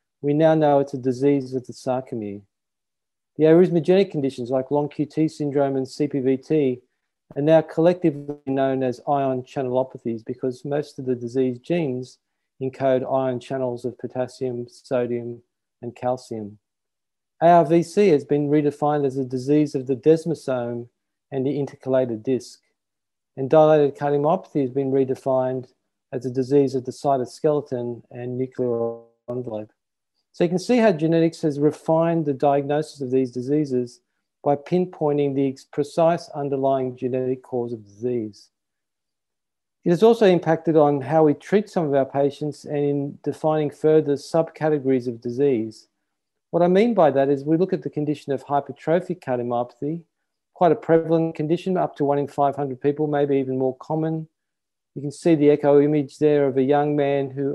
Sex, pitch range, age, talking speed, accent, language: male, 130-155 Hz, 40-59, 155 wpm, Australian, English